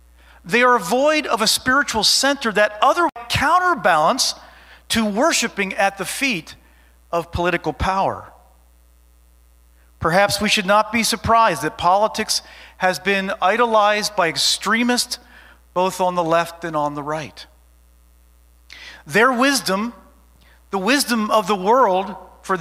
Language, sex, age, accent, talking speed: English, male, 40-59, American, 125 wpm